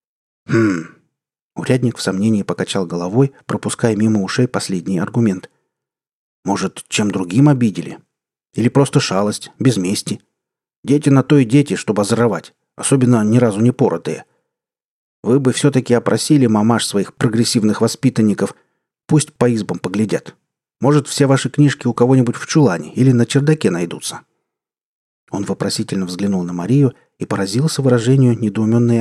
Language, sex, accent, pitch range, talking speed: Russian, male, native, 105-135 Hz, 130 wpm